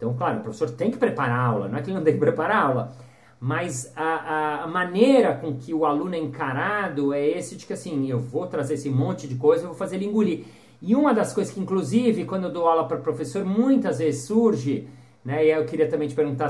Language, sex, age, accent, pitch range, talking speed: Portuguese, male, 50-69, Brazilian, 150-225 Hz, 255 wpm